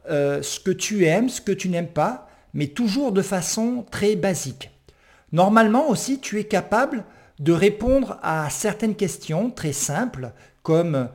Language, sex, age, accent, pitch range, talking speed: French, male, 50-69, French, 150-195 Hz, 155 wpm